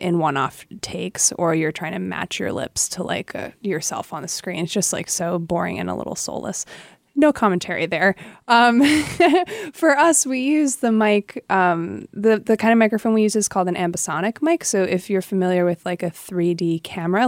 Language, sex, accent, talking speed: English, female, American, 200 wpm